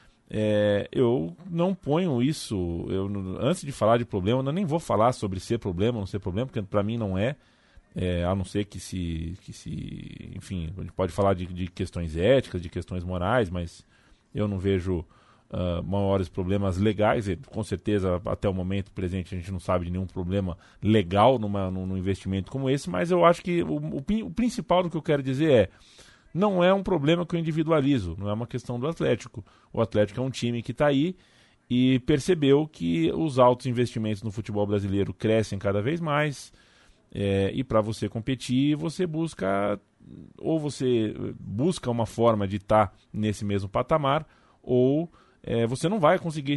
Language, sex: Portuguese, male